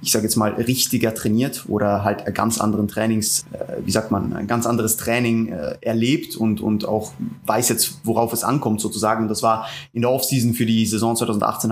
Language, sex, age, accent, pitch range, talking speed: German, male, 20-39, German, 110-125 Hz, 205 wpm